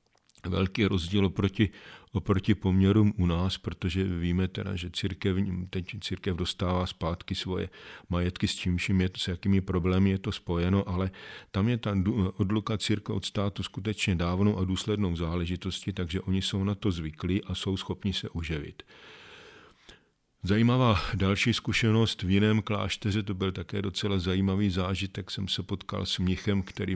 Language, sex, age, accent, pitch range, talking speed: Czech, male, 40-59, native, 90-100 Hz, 145 wpm